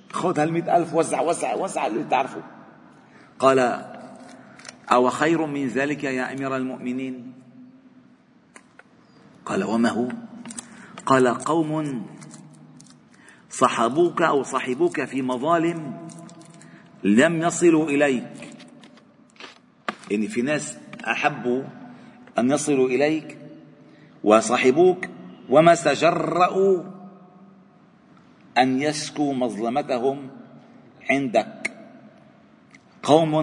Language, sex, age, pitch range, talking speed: Arabic, male, 40-59, 135-220 Hz, 80 wpm